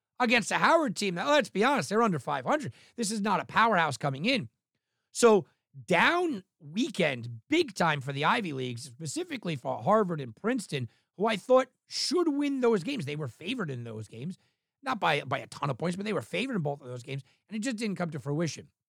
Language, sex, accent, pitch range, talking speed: English, male, American, 140-210 Hz, 215 wpm